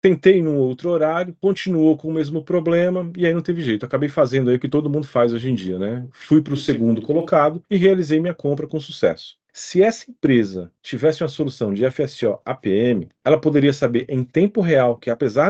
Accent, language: Brazilian, Portuguese